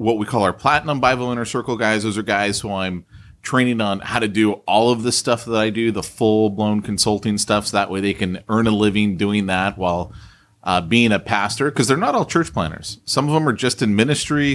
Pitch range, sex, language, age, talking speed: 95-115 Hz, male, English, 30-49, 245 wpm